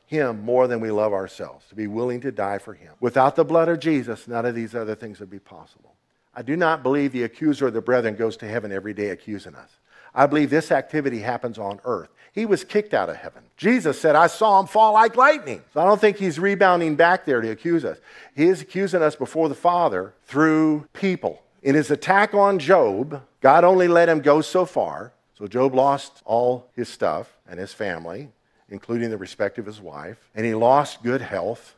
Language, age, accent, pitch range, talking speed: English, 50-69, American, 125-185 Hz, 215 wpm